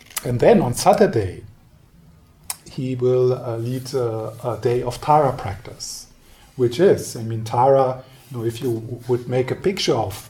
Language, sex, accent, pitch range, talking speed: English, male, German, 110-130 Hz, 150 wpm